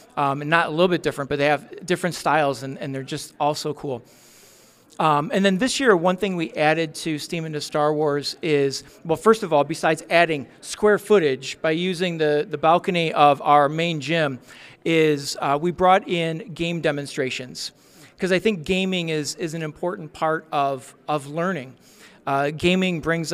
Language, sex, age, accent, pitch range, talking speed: English, male, 40-59, American, 150-175 Hz, 185 wpm